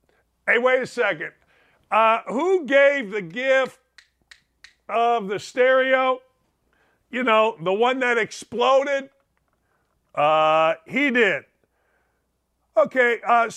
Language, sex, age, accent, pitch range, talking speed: English, male, 50-69, American, 190-270 Hz, 100 wpm